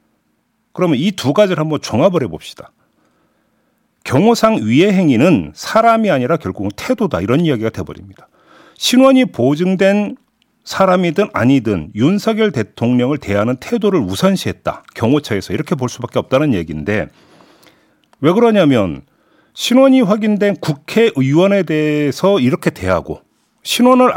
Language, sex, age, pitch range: Korean, male, 40-59, 140-215 Hz